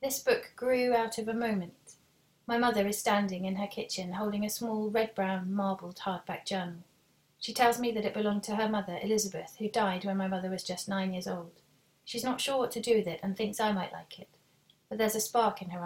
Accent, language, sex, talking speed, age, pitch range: British, English, female, 230 wpm, 30-49, 190-220 Hz